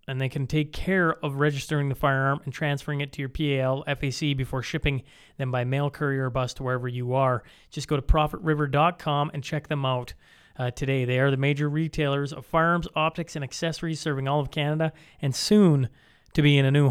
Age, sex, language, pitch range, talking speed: 30-49, male, English, 135-160 Hz, 210 wpm